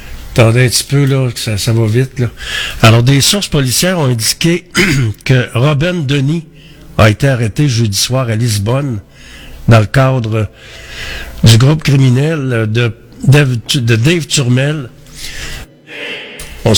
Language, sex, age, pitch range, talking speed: French, male, 60-79, 115-145 Hz, 130 wpm